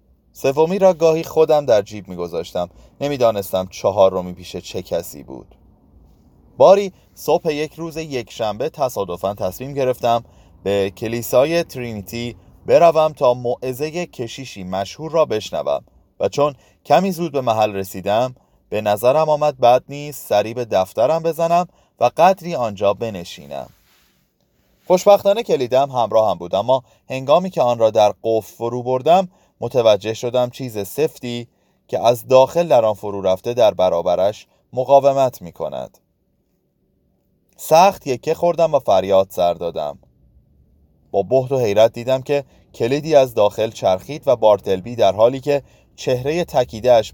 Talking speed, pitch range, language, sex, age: 135 wpm, 95-145 Hz, Persian, male, 30-49